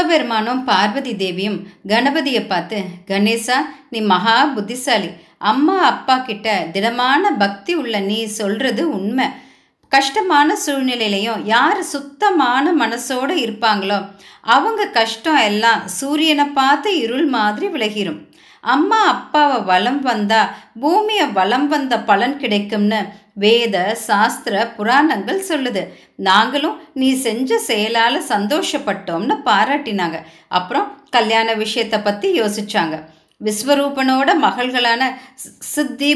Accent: native